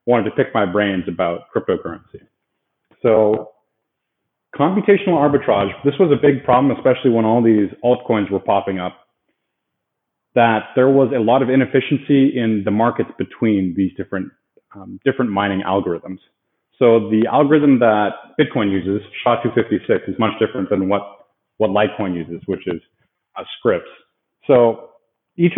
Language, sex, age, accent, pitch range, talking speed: English, male, 30-49, American, 105-135 Hz, 145 wpm